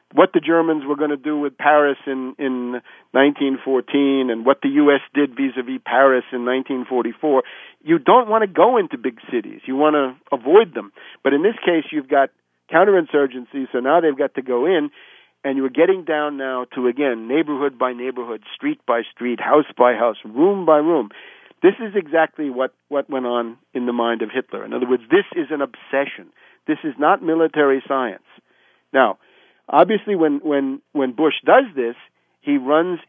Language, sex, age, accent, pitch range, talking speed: English, male, 50-69, American, 130-170 Hz, 185 wpm